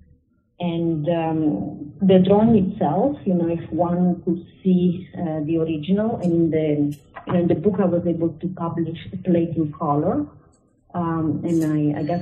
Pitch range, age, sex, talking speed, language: 155-185 Hz, 30-49, female, 175 wpm, English